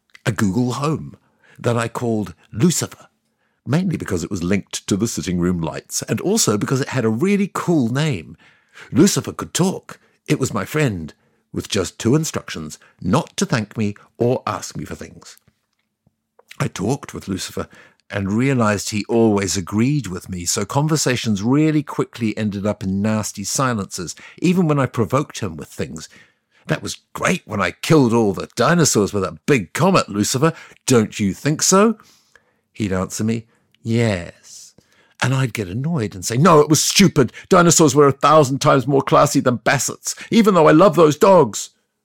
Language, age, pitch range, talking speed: English, 60-79, 100-140 Hz, 170 wpm